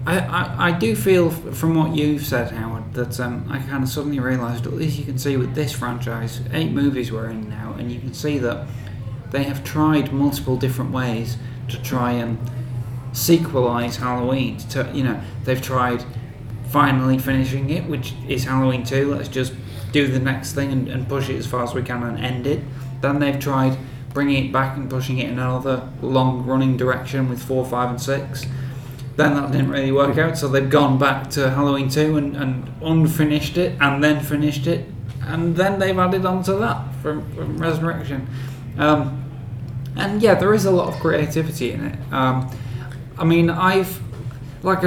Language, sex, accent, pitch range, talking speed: English, male, British, 125-145 Hz, 185 wpm